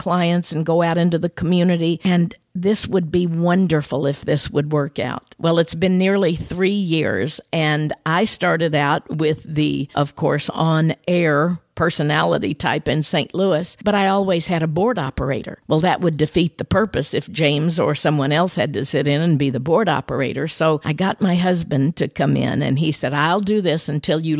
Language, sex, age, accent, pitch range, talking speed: English, female, 50-69, American, 155-185 Hz, 195 wpm